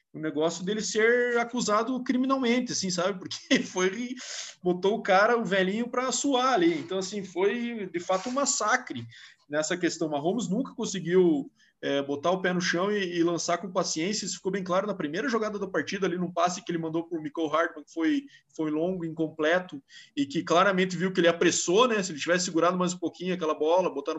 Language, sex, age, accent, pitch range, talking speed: Portuguese, male, 20-39, Brazilian, 170-235 Hz, 205 wpm